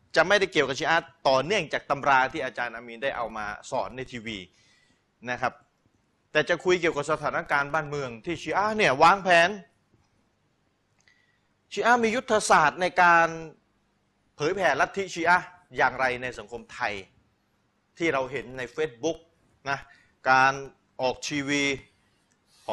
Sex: male